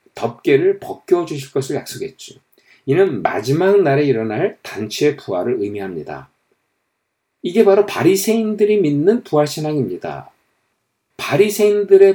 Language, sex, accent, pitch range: Korean, male, native, 140-210 Hz